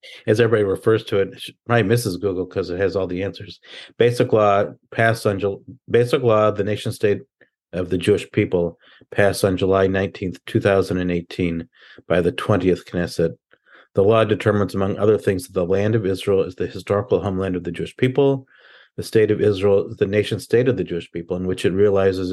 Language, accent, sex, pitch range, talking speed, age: English, American, male, 95-110 Hz, 200 wpm, 50-69